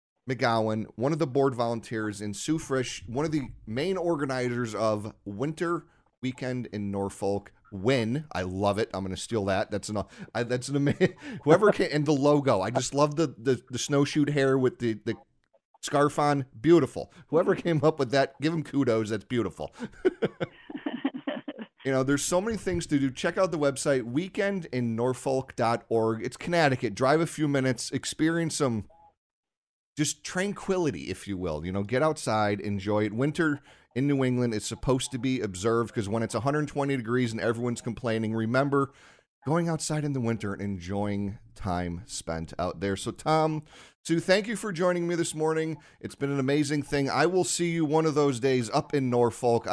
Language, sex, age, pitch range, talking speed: English, male, 30-49, 110-155 Hz, 180 wpm